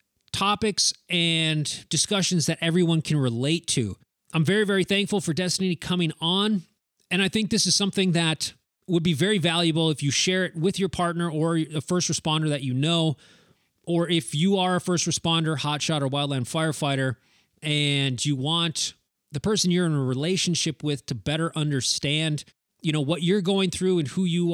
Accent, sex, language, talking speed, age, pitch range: American, male, English, 180 wpm, 30-49, 145-175 Hz